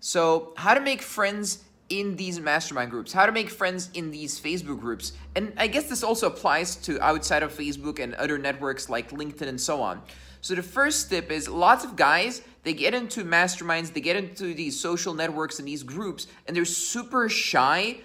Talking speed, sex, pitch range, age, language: 200 wpm, male, 150-185 Hz, 20-39, English